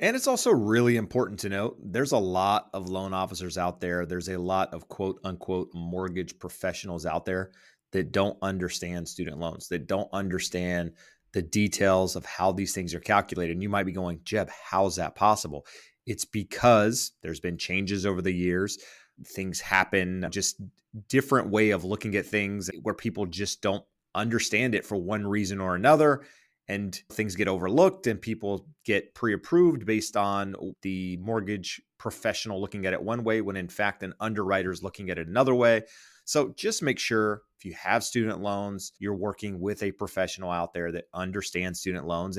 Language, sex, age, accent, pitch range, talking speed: English, male, 30-49, American, 95-110 Hz, 180 wpm